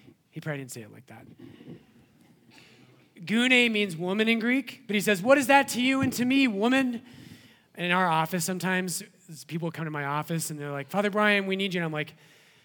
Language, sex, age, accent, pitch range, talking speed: English, male, 30-49, American, 165-215 Hz, 210 wpm